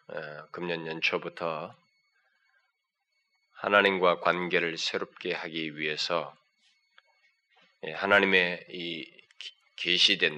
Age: 20-39